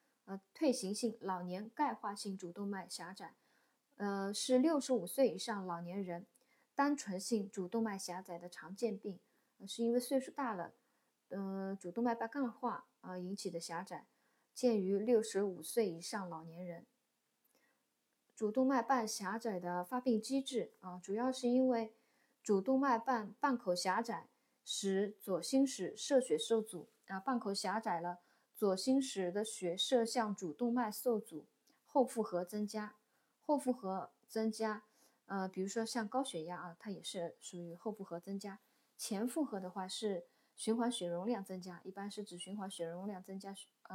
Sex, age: female, 20-39